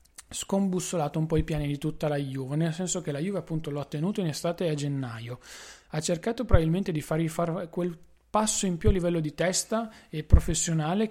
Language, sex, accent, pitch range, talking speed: Italian, male, native, 150-180 Hz, 200 wpm